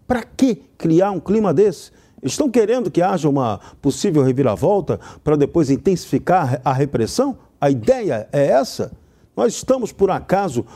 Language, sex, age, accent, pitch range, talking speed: Portuguese, male, 50-69, Brazilian, 155-215 Hz, 145 wpm